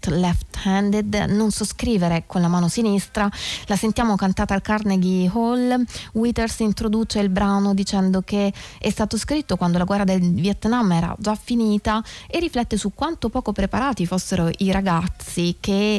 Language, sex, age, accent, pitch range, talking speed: Italian, female, 20-39, native, 180-215 Hz, 160 wpm